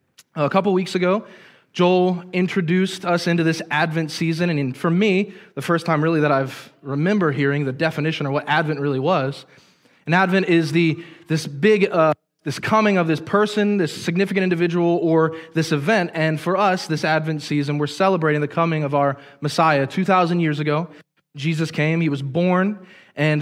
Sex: male